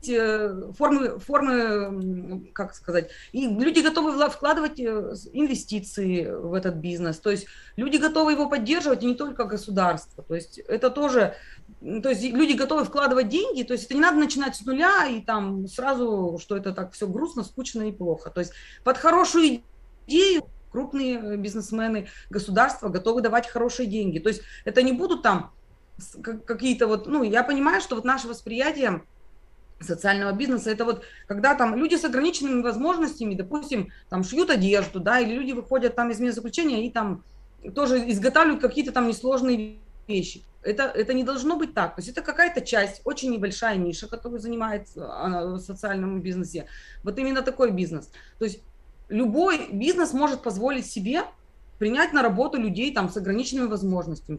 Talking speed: 160 wpm